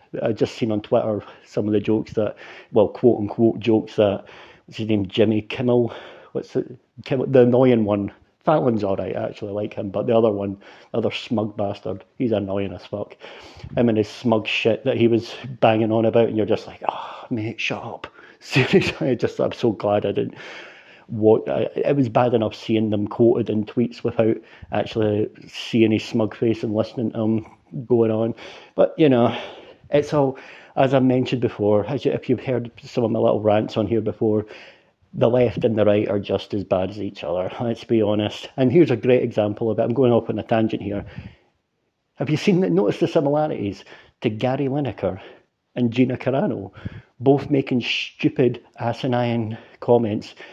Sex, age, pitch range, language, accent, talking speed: male, 40-59, 105-125 Hz, English, British, 190 wpm